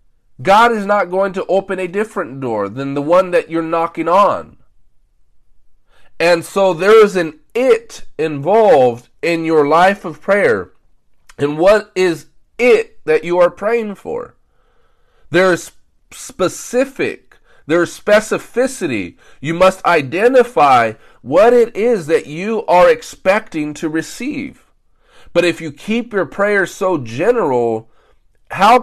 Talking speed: 135 wpm